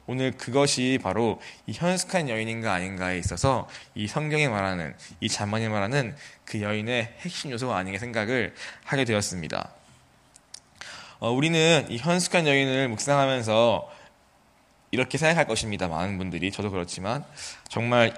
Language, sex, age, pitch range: Korean, male, 20-39, 105-135 Hz